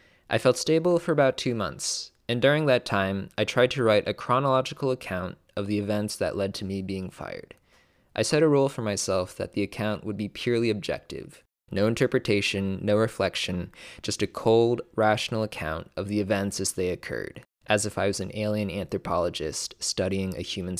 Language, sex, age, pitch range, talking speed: English, male, 20-39, 100-125 Hz, 190 wpm